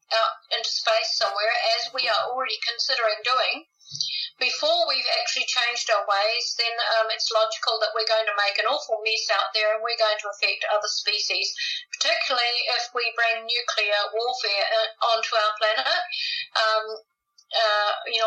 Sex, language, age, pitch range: female, English, 50-69, 220-280 Hz